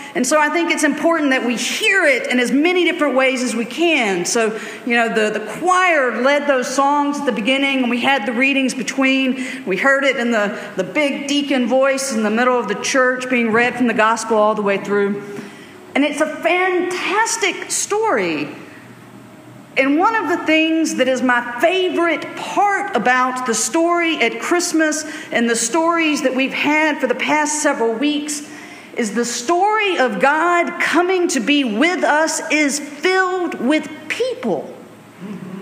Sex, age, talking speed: female, 50-69, 175 wpm